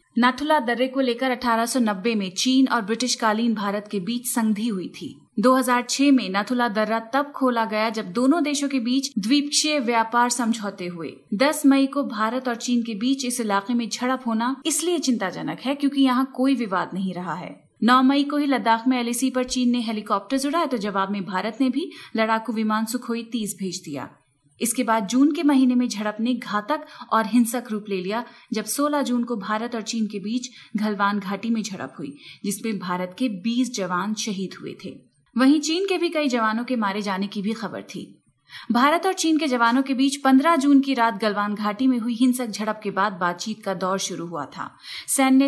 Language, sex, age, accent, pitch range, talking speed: Hindi, female, 30-49, native, 215-265 Hz, 205 wpm